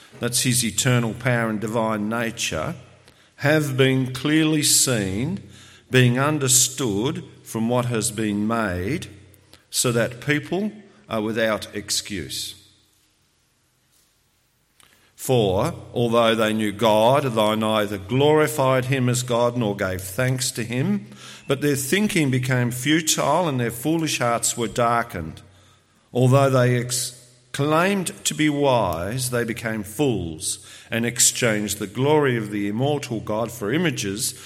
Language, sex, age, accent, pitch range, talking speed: English, male, 50-69, Australian, 105-130 Hz, 120 wpm